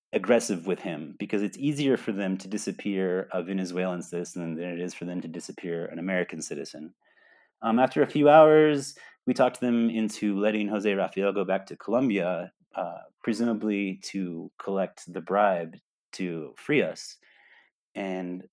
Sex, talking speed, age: male, 160 wpm, 30-49